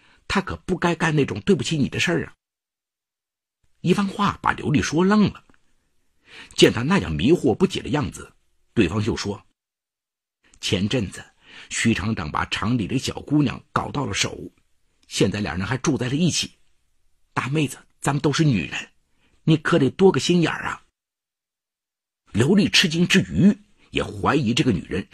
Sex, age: male, 50-69